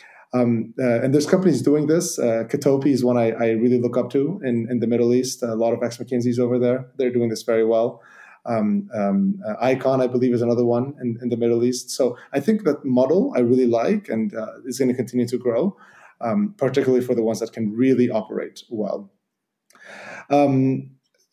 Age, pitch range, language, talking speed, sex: 20-39, 120-145 Hz, Dutch, 205 wpm, male